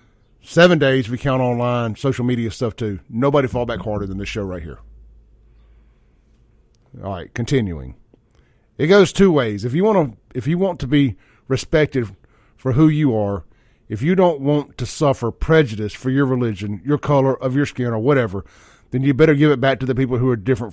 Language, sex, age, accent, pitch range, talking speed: English, male, 40-59, American, 110-150 Hz, 200 wpm